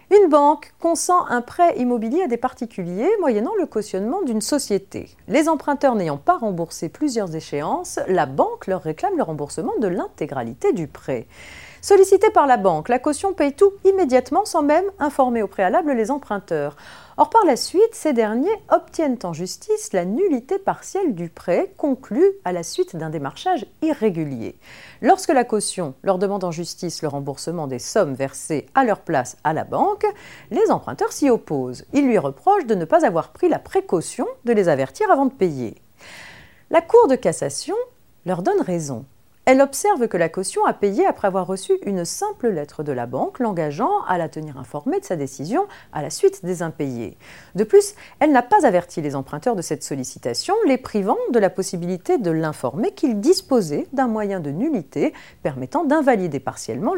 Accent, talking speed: French, 180 wpm